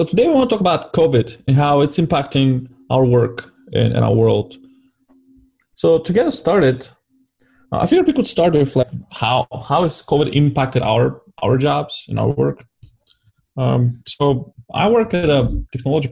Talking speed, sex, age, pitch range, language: 180 wpm, male, 20-39, 120-150 Hz, English